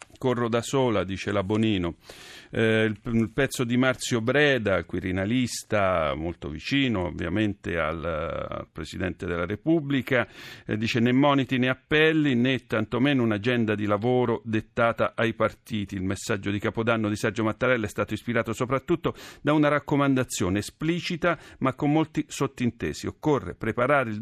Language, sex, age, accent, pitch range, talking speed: Italian, male, 50-69, native, 105-140 Hz, 130 wpm